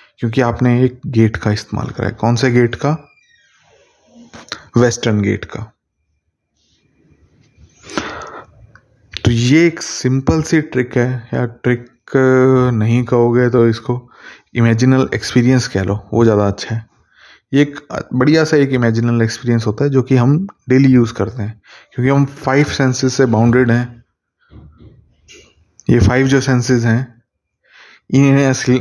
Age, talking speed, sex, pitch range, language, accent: 30-49, 135 wpm, male, 110-130 Hz, Hindi, native